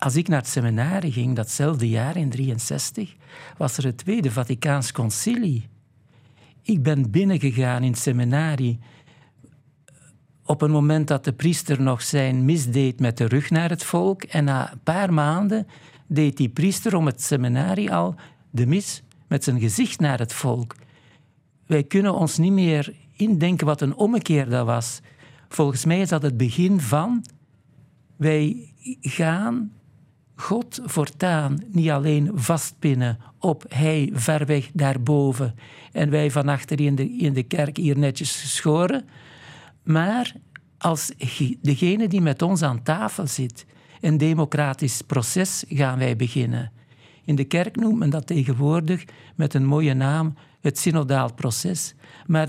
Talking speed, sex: 150 wpm, male